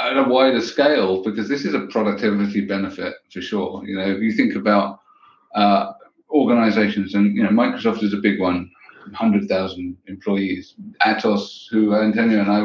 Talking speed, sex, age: 165 wpm, male, 50-69